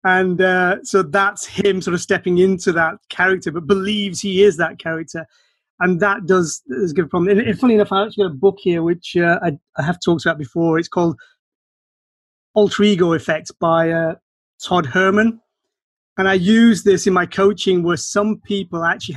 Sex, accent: male, British